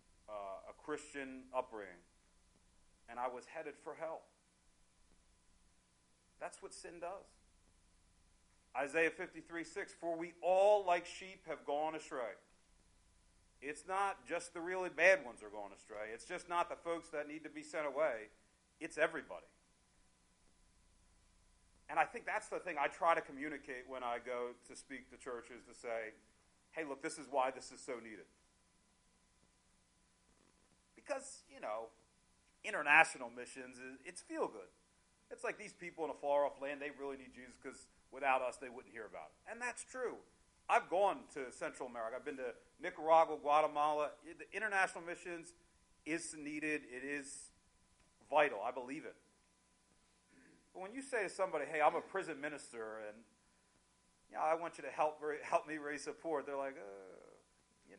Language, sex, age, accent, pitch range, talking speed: English, male, 40-59, American, 110-170 Hz, 160 wpm